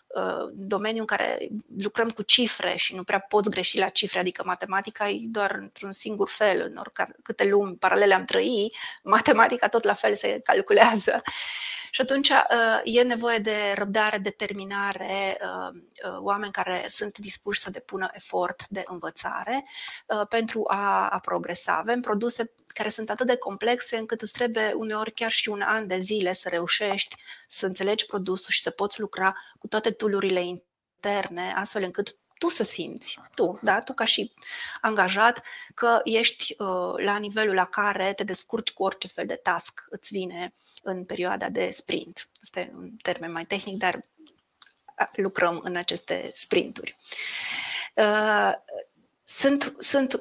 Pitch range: 195-230 Hz